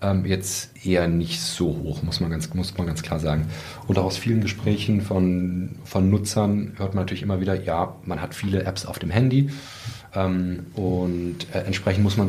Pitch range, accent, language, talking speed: 95-115 Hz, German, German, 185 wpm